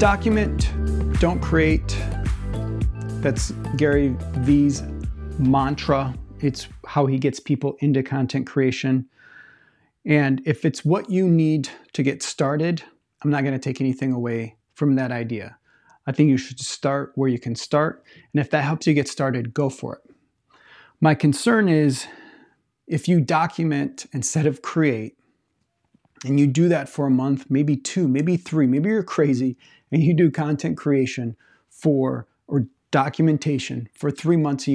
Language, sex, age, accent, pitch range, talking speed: English, male, 30-49, American, 130-155 Hz, 150 wpm